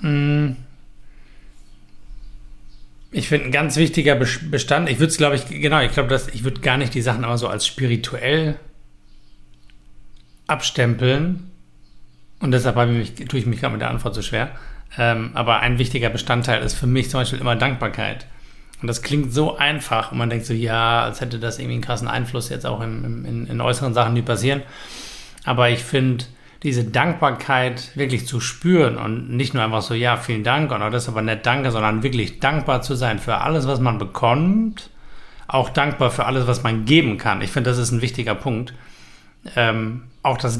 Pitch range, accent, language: 110-135 Hz, German, German